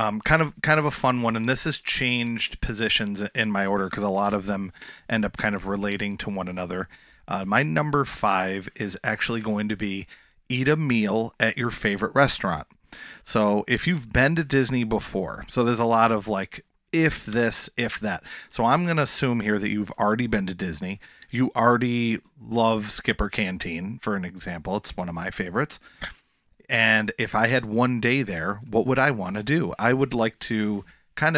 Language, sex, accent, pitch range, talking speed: English, male, American, 100-125 Hz, 200 wpm